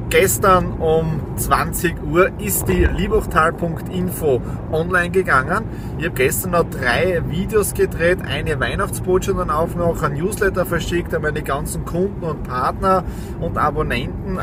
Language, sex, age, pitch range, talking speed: German, male, 30-49, 130-165 Hz, 130 wpm